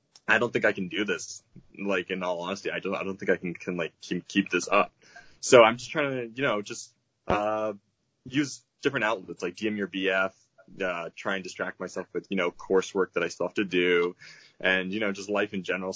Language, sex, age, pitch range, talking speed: English, male, 20-39, 95-115 Hz, 235 wpm